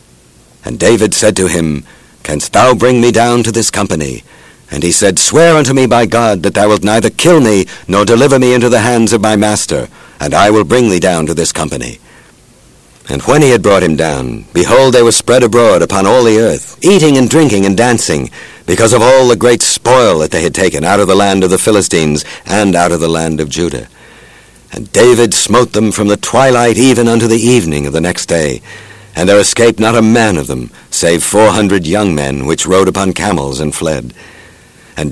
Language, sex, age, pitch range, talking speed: English, male, 60-79, 90-120 Hz, 215 wpm